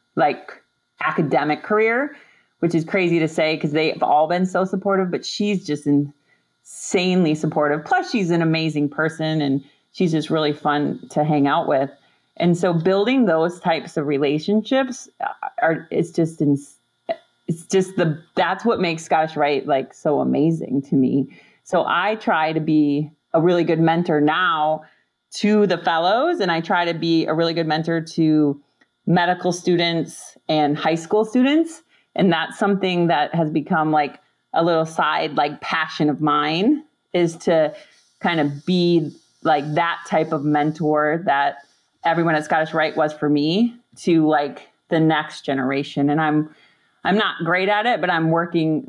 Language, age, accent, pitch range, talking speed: English, 30-49, American, 150-180 Hz, 165 wpm